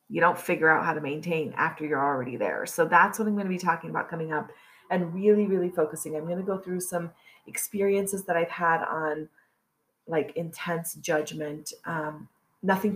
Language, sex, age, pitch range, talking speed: English, female, 30-49, 160-205 Hz, 195 wpm